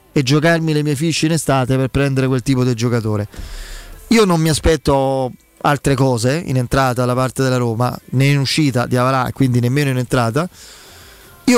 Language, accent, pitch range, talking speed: Italian, native, 130-165 Hz, 180 wpm